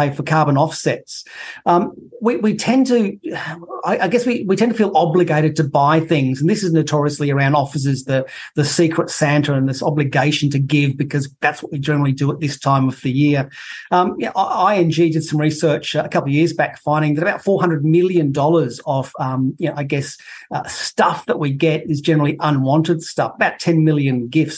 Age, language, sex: 30-49, English, male